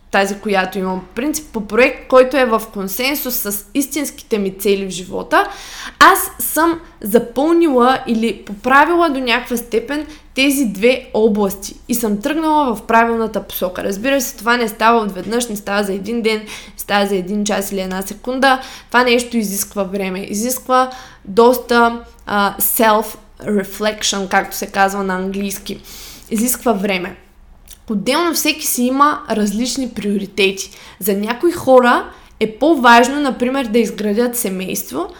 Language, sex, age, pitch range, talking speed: Bulgarian, female, 20-39, 205-265 Hz, 140 wpm